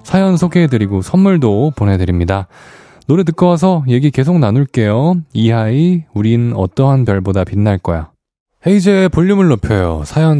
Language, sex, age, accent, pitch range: Korean, male, 20-39, native, 95-150 Hz